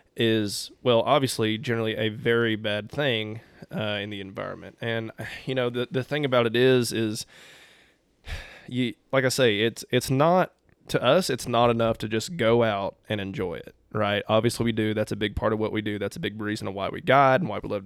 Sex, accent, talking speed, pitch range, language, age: male, American, 215 wpm, 105-125 Hz, English, 20-39